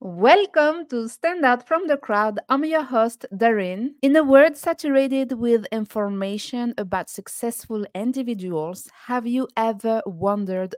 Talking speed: 135 wpm